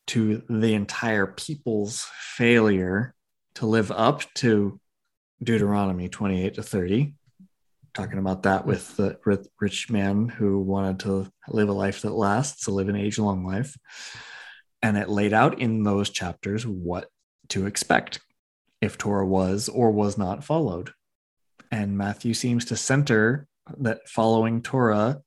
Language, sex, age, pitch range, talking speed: English, male, 20-39, 100-120 Hz, 140 wpm